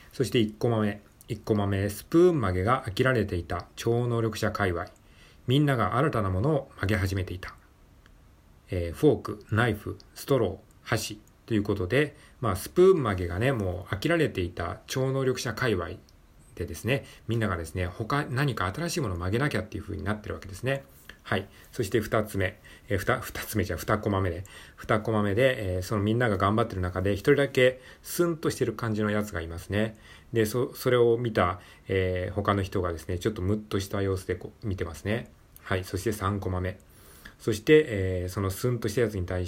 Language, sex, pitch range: Japanese, male, 90-120 Hz